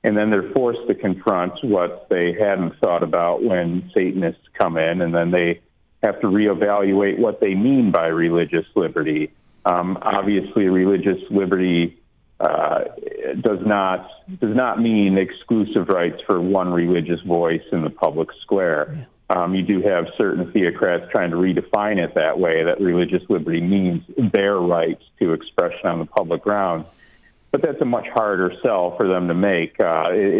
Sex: male